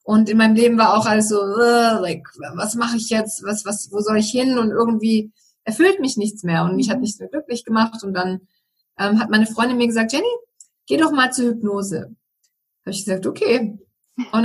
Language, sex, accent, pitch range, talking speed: German, female, German, 210-255 Hz, 215 wpm